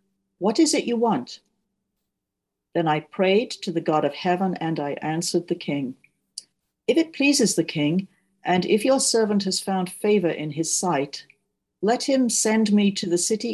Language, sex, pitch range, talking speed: English, female, 165-215 Hz, 175 wpm